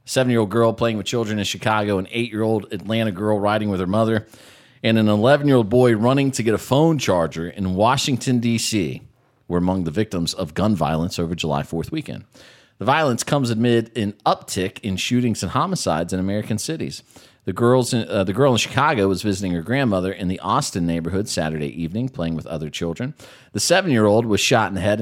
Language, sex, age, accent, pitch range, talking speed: English, male, 40-59, American, 95-125 Hz, 195 wpm